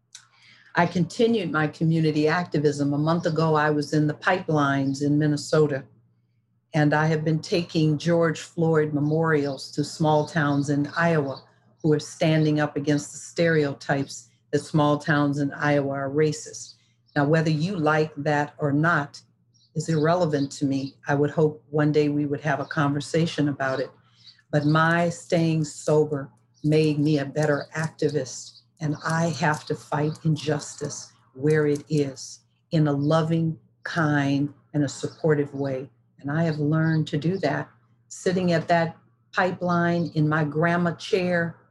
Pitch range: 145-160 Hz